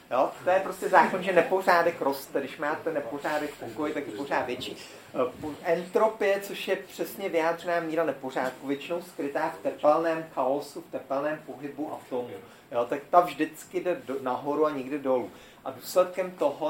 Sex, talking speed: male, 155 wpm